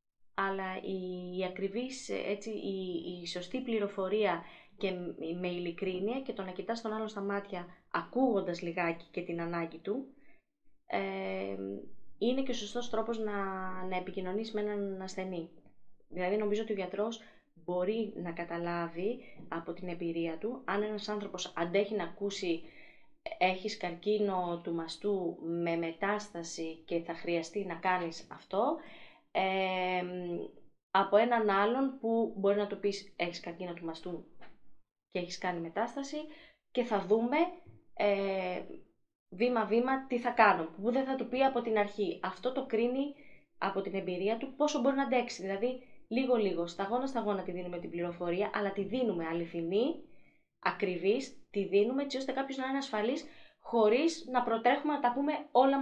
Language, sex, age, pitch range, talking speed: Greek, female, 20-39, 180-240 Hz, 150 wpm